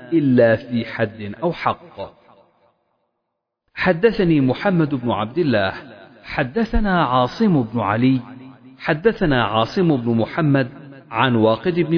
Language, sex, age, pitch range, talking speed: Arabic, male, 40-59, 115-165 Hz, 105 wpm